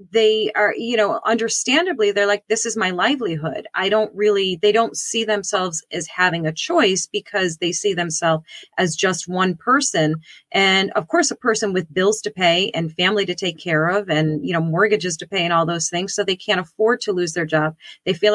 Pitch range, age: 170-210 Hz, 30-49